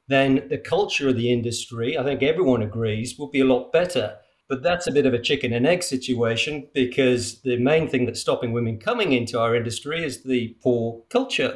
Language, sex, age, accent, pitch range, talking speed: English, male, 40-59, British, 120-140 Hz, 210 wpm